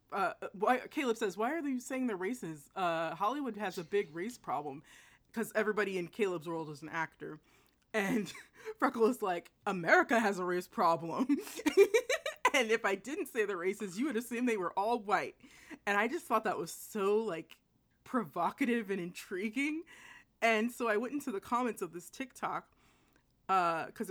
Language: English